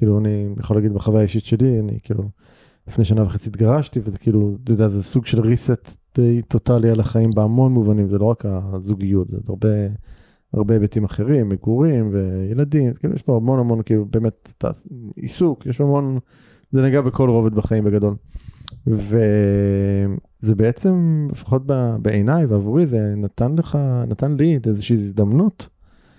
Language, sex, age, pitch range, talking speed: Hebrew, male, 20-39, 105-130 Hz, 155 wpm